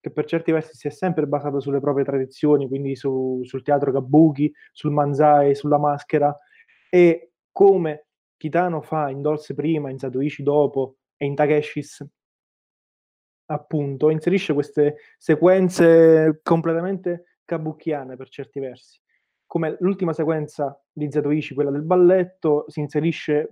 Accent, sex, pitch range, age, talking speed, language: native, male, 145-160 Hz, 20-39, 135 wpm, Italian